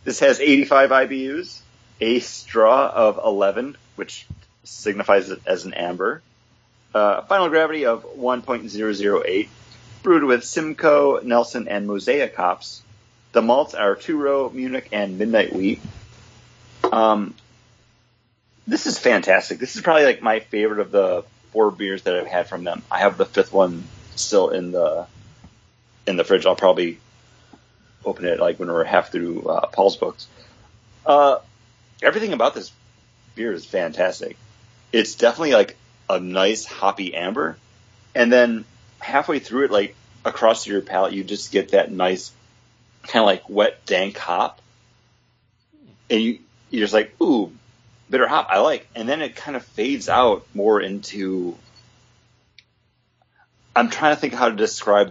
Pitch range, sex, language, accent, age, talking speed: 110-130 Hz, male, English, American, 30-49, 150 wpm